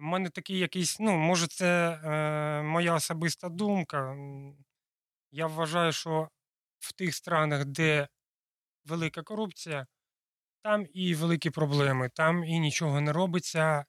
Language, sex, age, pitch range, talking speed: Dutch, male, 20-39, 145-175 Hz, 125 wpm